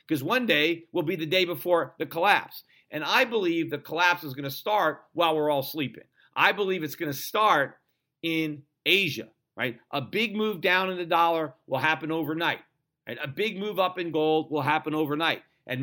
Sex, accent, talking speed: male, American, 195 wpm